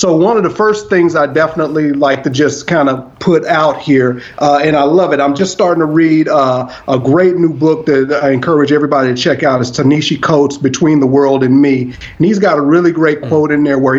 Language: English